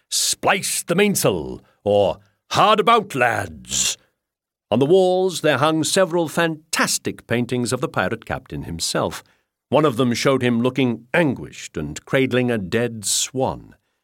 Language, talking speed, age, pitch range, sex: English, 135 wpm, 50-69, 110-155 Hz, male